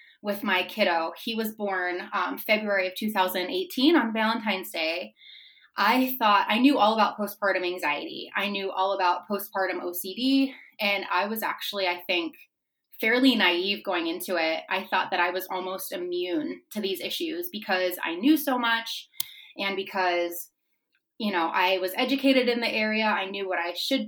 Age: 20-39